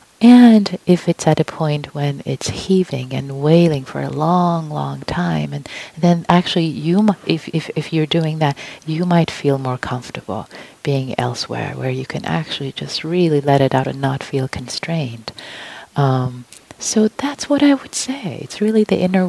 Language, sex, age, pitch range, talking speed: English, female, 30-49, 145-185 Hz, 180 wpm